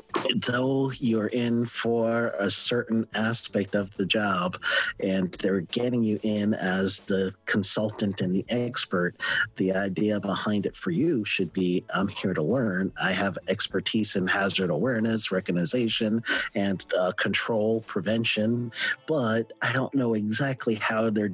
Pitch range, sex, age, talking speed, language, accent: 95-110 Hz, male, 40-59, 145 wpm, English, American